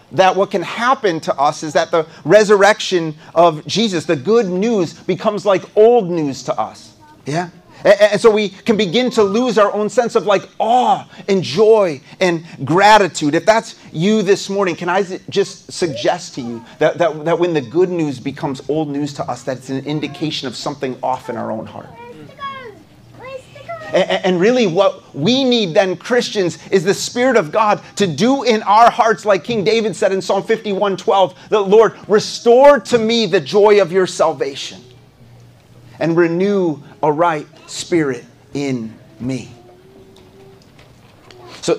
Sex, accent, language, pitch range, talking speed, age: male, American, English, 140-205 Hz, 170 wpm, 30-49